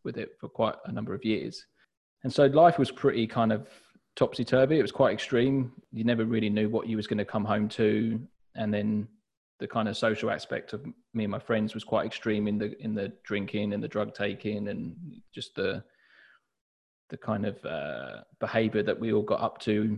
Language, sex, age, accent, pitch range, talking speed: English, male, 20-39, British, 105-115 Hz, 210 wpm